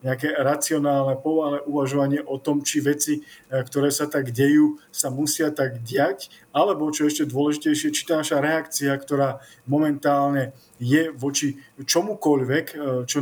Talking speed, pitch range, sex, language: 135 wpm, 135-150 Hz, male, Slovak